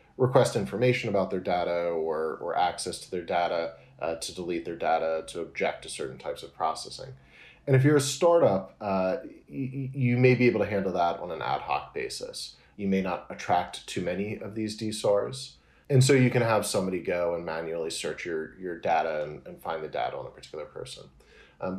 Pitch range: 90-130 Hz